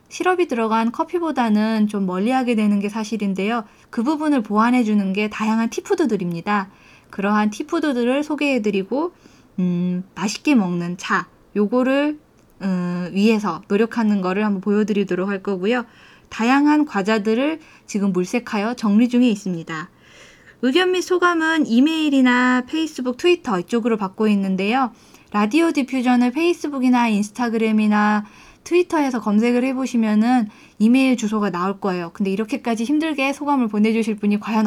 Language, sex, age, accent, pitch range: Korean, female, 20-39, native, 205-265 Hz